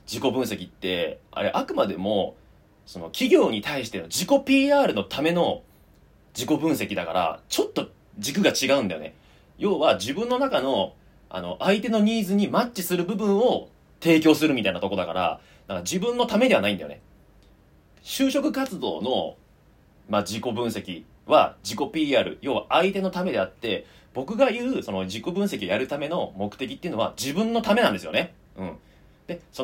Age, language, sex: 30-49, Japanese, male